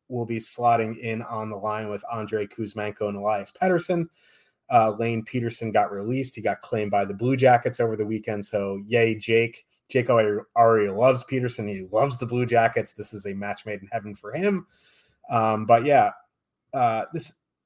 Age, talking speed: 30-49, 185 wpm